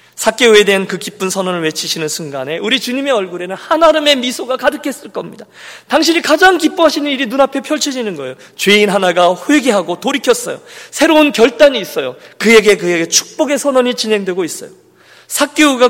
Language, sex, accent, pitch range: Korean, male, native, 175-265 Hz